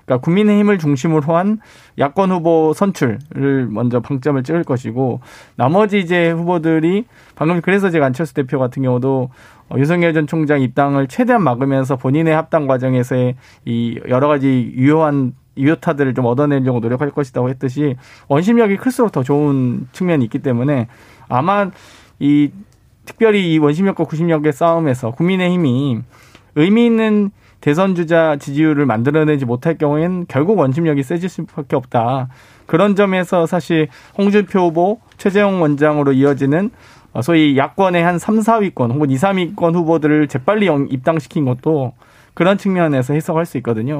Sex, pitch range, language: male, 130-170 Hz, Korean